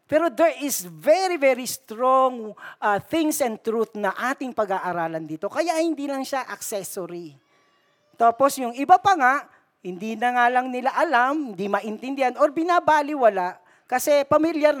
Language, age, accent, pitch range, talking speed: Filipino, 40-59, native, 185-275 Hz, 145 wpm